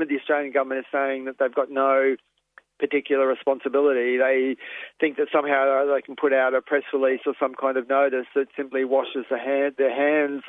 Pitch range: 125-135 Hz